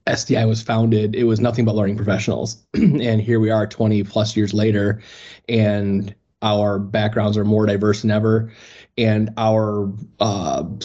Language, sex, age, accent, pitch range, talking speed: English, male, 30-49, American, 105-115 Hz, 155 wpm